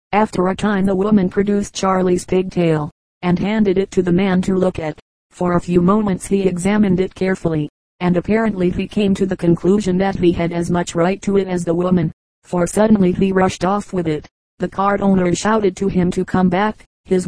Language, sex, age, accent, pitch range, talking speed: English, female, 40-59, American, 180-195 Hz, 210 wpm